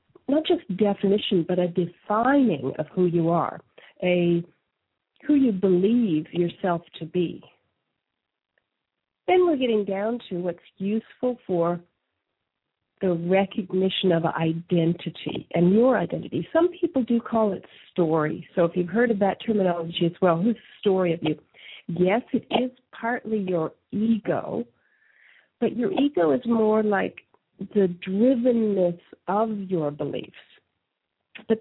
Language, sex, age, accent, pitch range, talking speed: English, female, 50-69, American, 175-225 Hz, 130 wpm